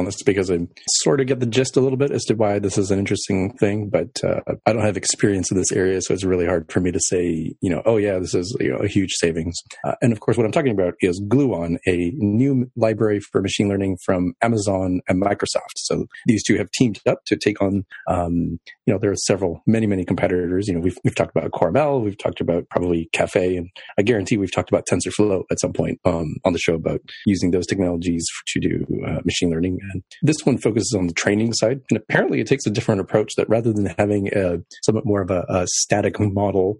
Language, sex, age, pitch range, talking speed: English, male, 30-49, 90-110 Hz, 240 wpm